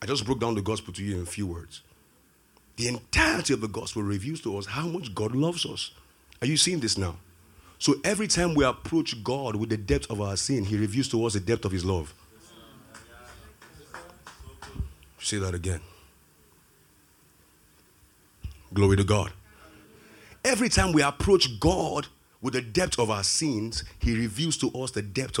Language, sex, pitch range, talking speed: English, male, 90-135 Hz, 175 wpm